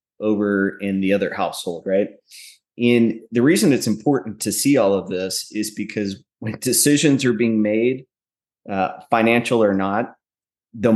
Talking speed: 155 wpm